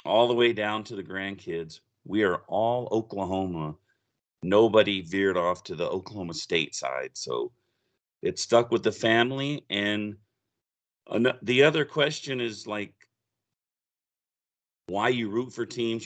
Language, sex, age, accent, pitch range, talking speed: English, male, 40-59, American, 95-125 Hz, 135 wpm